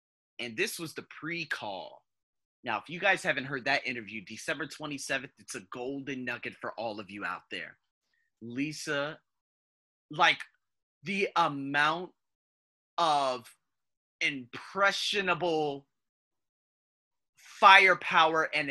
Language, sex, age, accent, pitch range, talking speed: English, male, 30-49, American, 130-180 Hz, 105 wpm